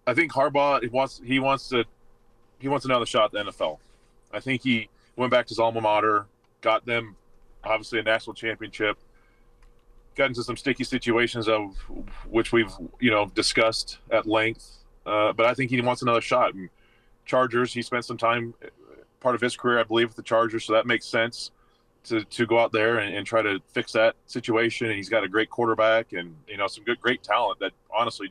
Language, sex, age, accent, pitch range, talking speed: English, male, 30-49, American, 110-125 Hz, 205 wpm